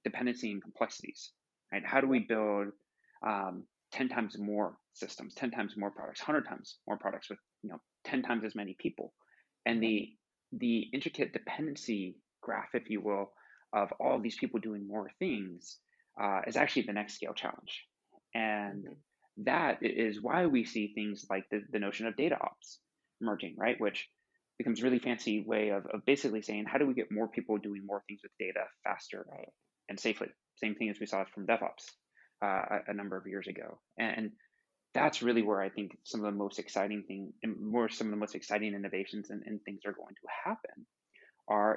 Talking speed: 190 wpm